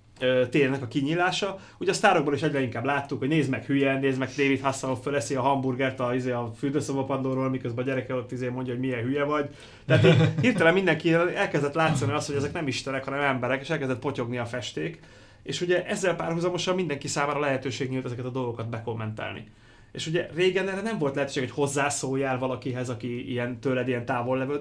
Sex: male